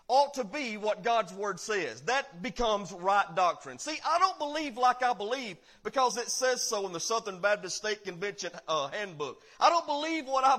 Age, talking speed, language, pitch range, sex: 40-59, 200 wpm, English, 225-290 Hz, male